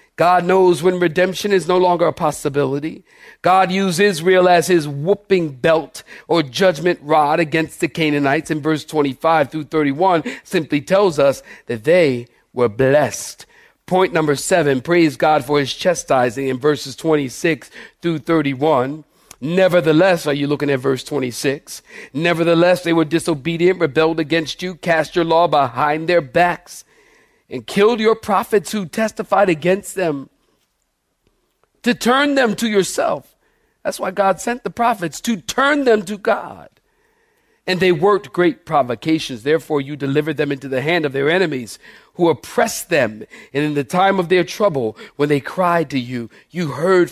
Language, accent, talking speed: English, American, 155 wpm